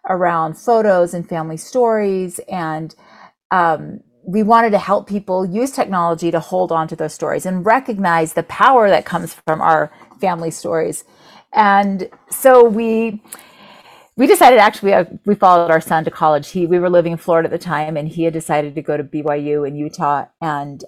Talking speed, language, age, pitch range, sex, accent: 180 wpm, English, 40-59, 160-200 Hz, female, American